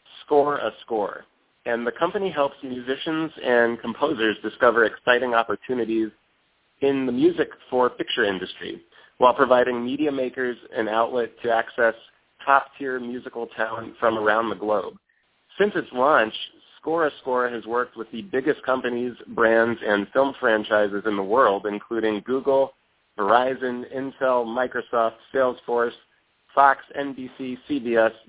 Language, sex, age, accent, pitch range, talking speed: English, male, 30-49, American, 115-135 Hz, 130 wpm